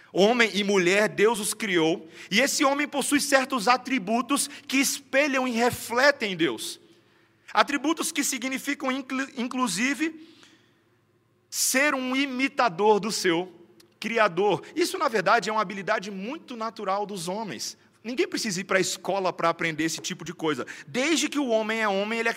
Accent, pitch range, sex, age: Brazilian, 185-255 Hz, male, 40-59